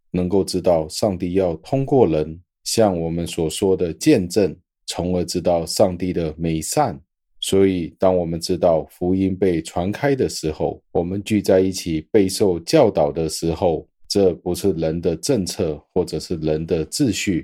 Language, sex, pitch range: Chinese, male, 80-100 Hz